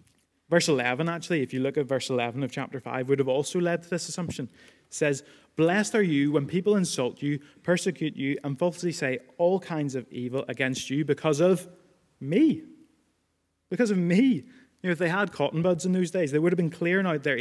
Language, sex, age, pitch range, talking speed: English, male, 20-39, 135-175 Hz, 215 wpm